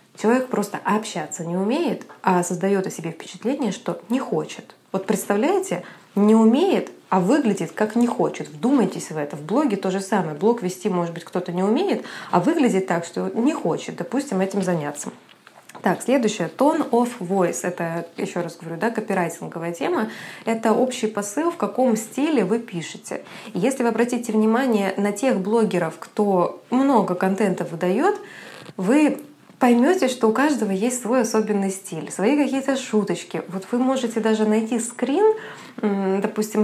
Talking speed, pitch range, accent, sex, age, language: 155 wpm, 185-245 Hz, native, female, 20-39, Russian